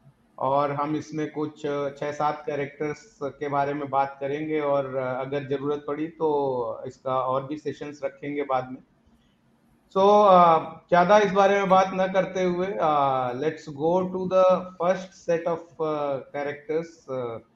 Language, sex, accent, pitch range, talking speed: Hindi, male, native, 145-175 Hz, 145 wpm